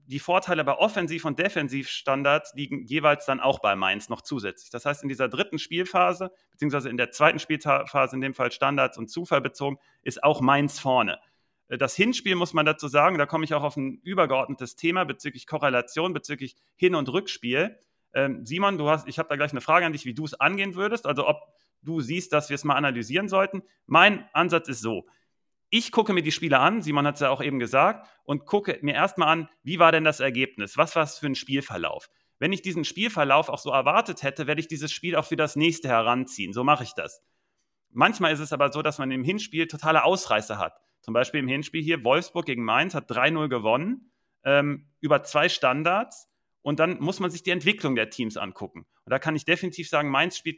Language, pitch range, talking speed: German, 135-170 Hz, 210 wpm